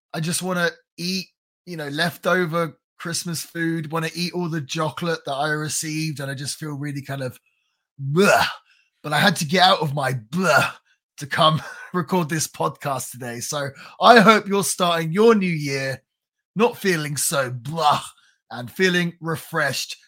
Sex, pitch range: male, 140-190 Hz